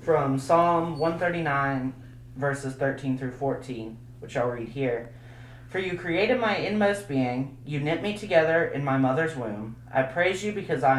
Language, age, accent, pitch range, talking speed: English, 30-49, American, 120-155 Hz, 165 wpm